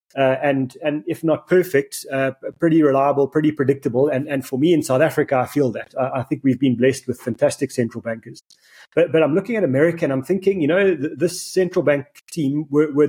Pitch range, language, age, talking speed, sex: 135-160 Hz, English, 30-49, 225 wpm, male